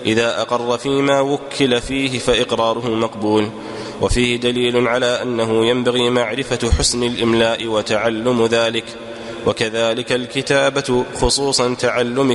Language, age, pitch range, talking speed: Arabic, 20-39, 115-125 Hz, 100 wpm